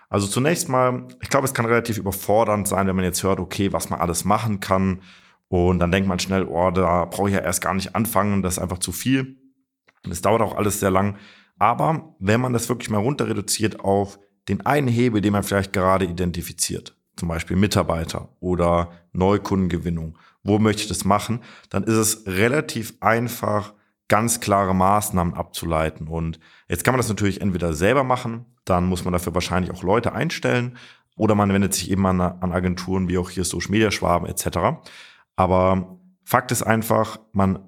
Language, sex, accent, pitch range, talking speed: German, male, German, 90-110 Hz, 190 wpm